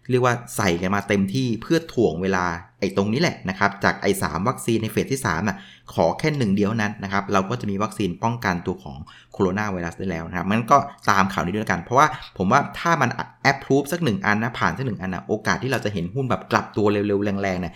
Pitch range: 95-120 Hz